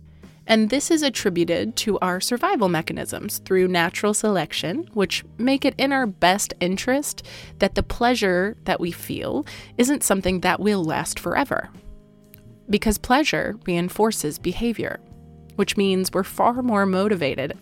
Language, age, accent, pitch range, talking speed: English, 20-39, American, 170-210 Hz, 135 wpm